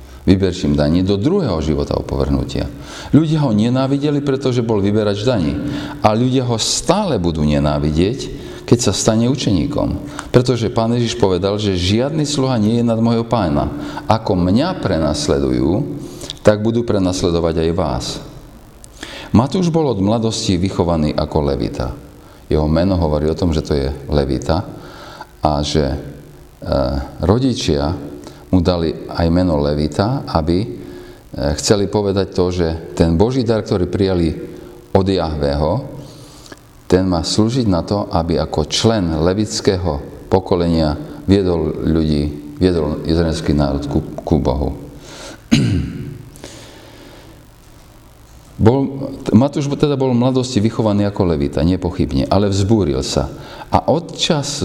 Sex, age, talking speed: male, 40-59, 120 wpm